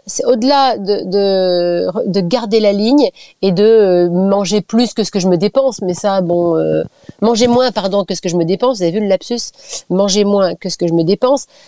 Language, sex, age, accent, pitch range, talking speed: French, female, 30-49, French, 195-260 Hz, 225 wpm